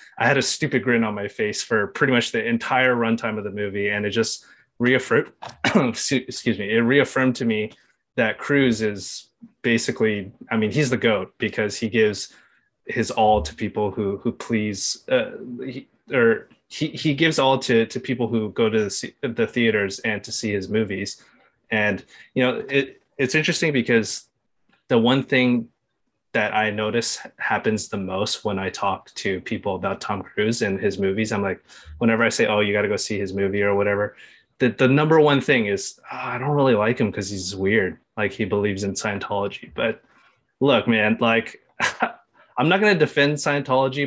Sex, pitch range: male, 105-135 Hz